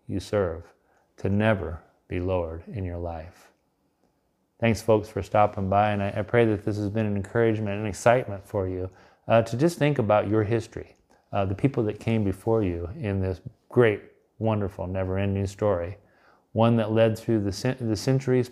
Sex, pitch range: male, 95-110 Hz